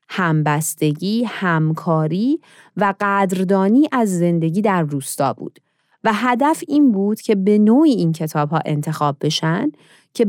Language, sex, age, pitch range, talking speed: Persian, female, 30-49, 160-245 Hz, 120 wpm